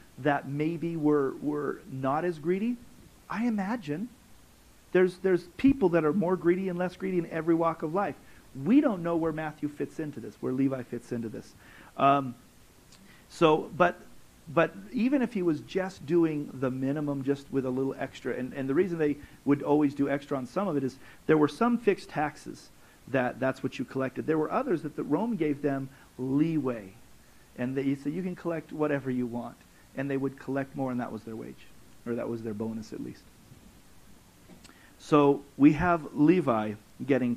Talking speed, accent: 190 wpm, American